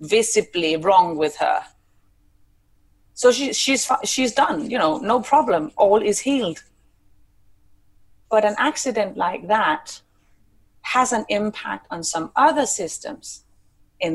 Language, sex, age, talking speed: English, female, 30-49, 125 wpm